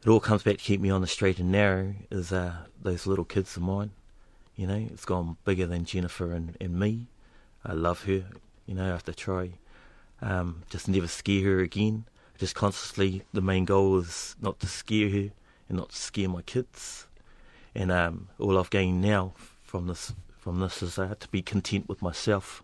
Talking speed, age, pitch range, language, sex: 205 wpm, 30-49, 95-115 Hz, English, male